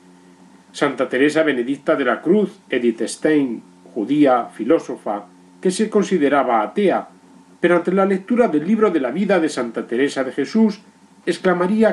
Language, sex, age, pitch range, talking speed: Spanish, male, 40-59, 120-195 Hz, 145 wpm